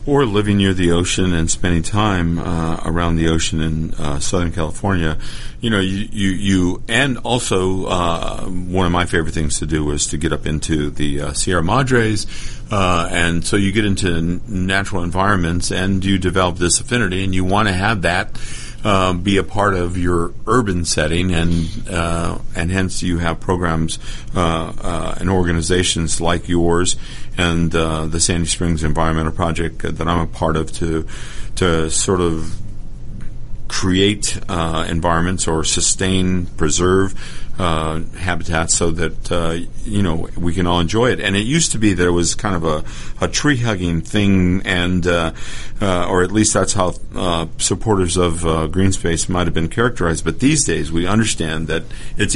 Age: 50-69